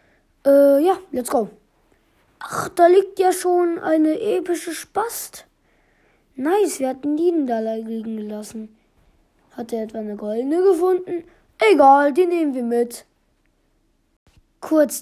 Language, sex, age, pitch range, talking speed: German, female, 20-39, 225-320 Hz, 130 wpm